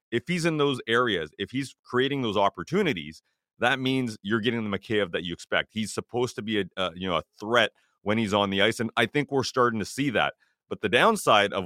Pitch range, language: 100-125 Hz, English